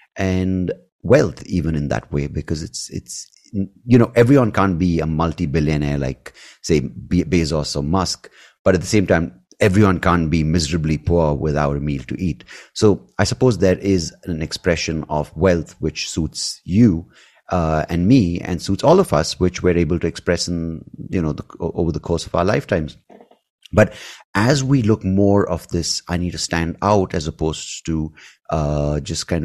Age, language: 30-49, English